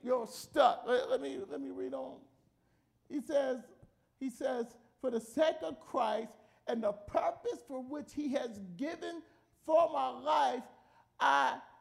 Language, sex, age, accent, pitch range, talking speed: English, male, 50-69, American, 255-330 Hz, 145 wpm